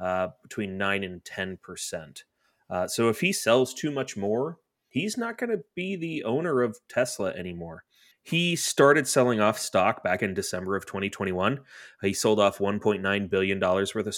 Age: 30-49